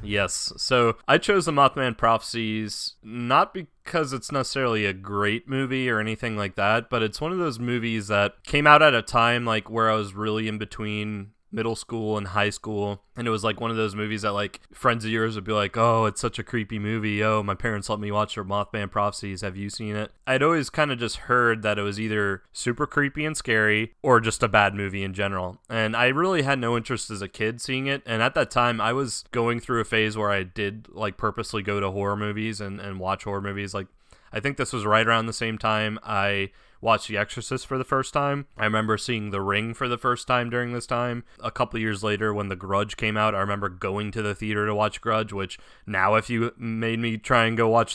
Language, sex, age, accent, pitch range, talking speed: English, male, 20-39, American, 105-125 Hz, 240 wpm